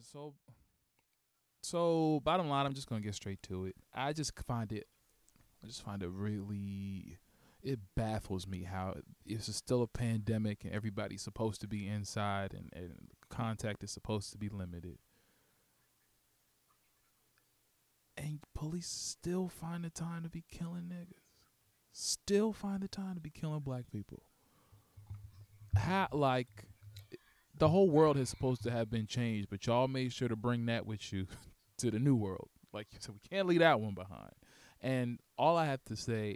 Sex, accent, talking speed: male, American, 170 wpm